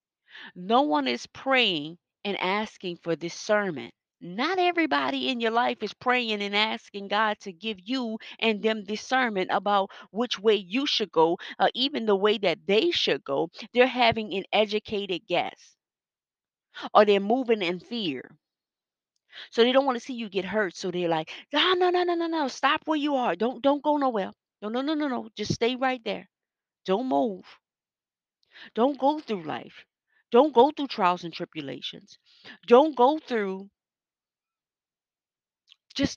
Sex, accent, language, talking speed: female, American, English, 165 wpm